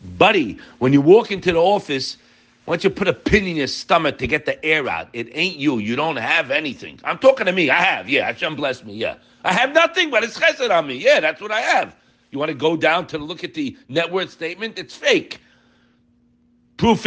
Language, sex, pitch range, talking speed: English, male, 155-225 Hz, 235 wpm